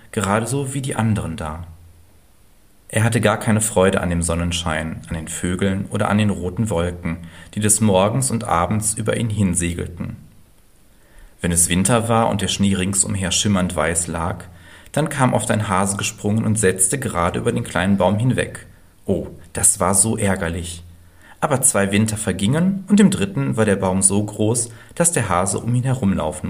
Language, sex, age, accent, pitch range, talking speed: German, male, 40-59, German, 85-110 Hz, 175 wpm